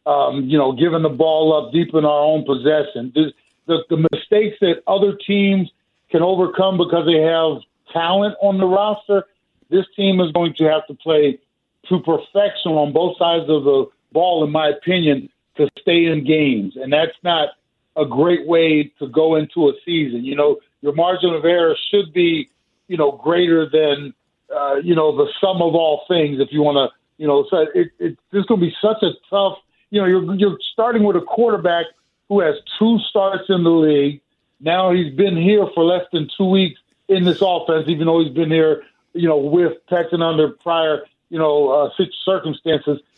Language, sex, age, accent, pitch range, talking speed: English, male, 50-69, American, 155-195 Hz, 190 wpm